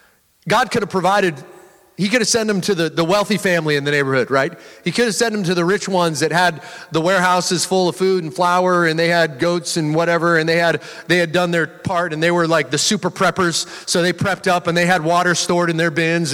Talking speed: 255 wpm